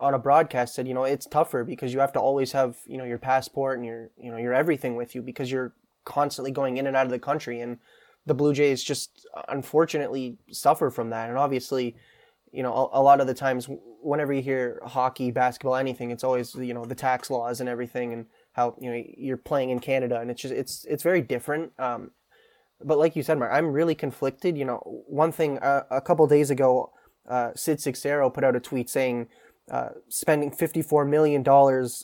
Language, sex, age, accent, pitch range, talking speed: English, male, 20-39, American, 125-145 Hz, 215 wpm